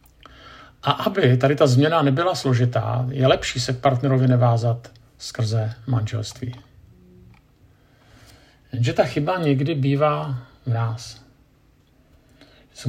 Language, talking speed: Czech, 105 wpm